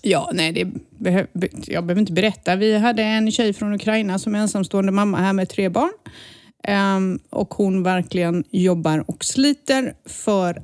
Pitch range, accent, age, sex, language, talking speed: 180-215 Hz, native, 30-49, female, Swedish, 170 wpm